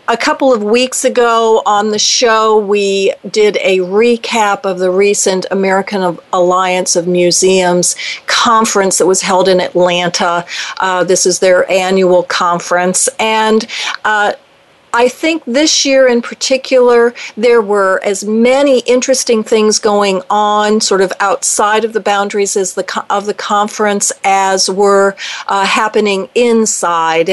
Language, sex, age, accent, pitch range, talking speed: English, female, 40-59, American, 190-225 Hz, 140 wpm